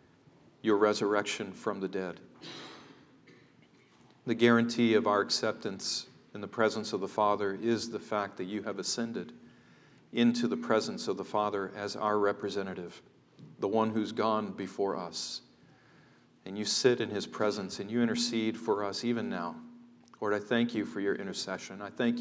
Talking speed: 160 wpm